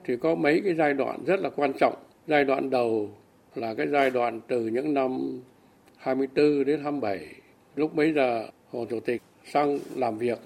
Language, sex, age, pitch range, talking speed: Vietnamese, male, 60-79, 120-150 Hz, 185 wpm